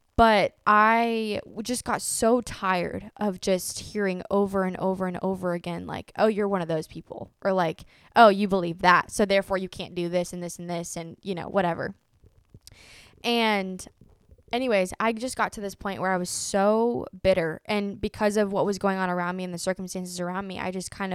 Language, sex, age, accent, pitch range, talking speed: English, female, 10-29, American, 180-210 Hz, 205 wpm